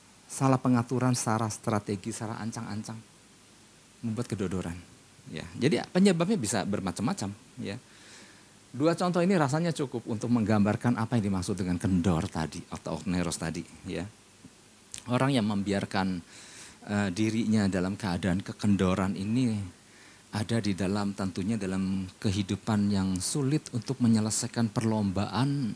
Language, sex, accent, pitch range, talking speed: Indonesian, male, native, 105-155 Hz, 120 wpm